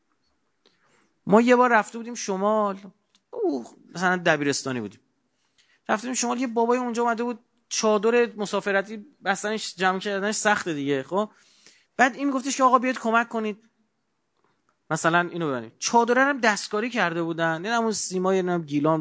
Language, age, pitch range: Persian, 30-49, 160-225 Hz